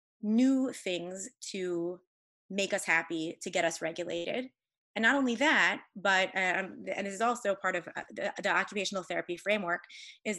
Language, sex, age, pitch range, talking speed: English, female, 20-39, 185-240 Hz, 160 wpm